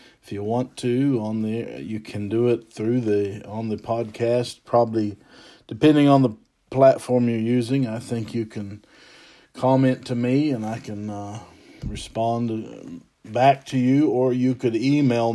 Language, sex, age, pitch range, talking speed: English, male, 50-69, 105-125 Hz, 165 wpm